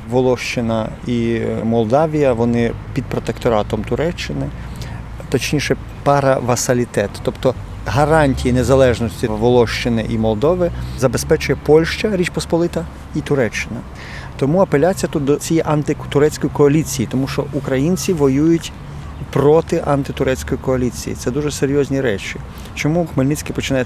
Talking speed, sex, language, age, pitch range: 105 wpm, male, Ukrainian, 40-59, 115-145 Hz